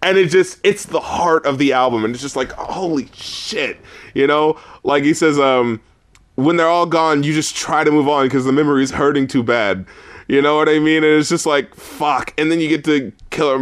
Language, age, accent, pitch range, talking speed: English, 20-39, American, 125-160 Hz, 235 wpm